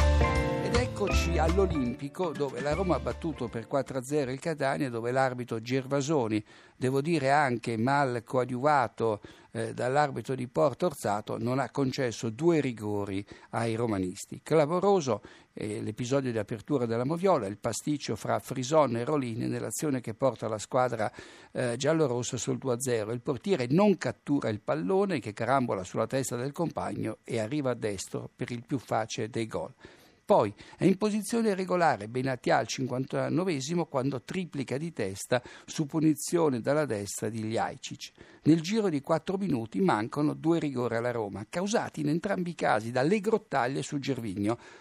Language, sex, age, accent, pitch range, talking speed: Italian, male, 60-79, native, 115-155 Hz, 145 wpm